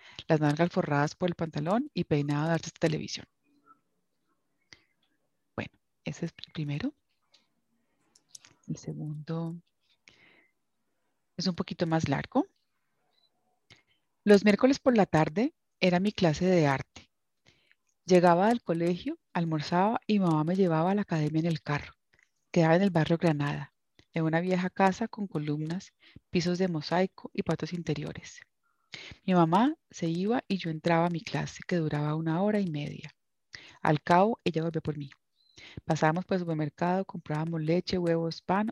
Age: 30-49